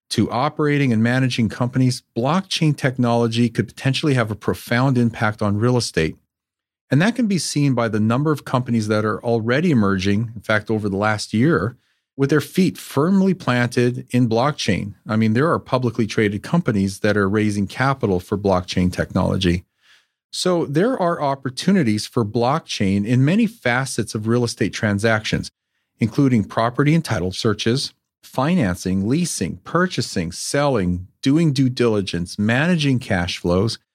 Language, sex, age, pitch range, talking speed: English, male, 40-59, 105-140 Hz, 150 wpm